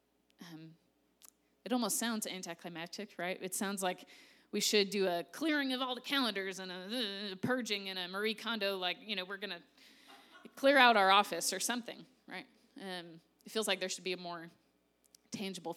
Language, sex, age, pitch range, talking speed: English, female, 20-39, 180-230 Hz, 185 wpm